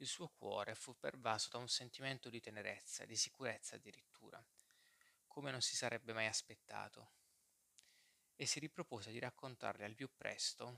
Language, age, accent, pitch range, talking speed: Italian, 20-39, native, 115-135 Hz, 150 wpm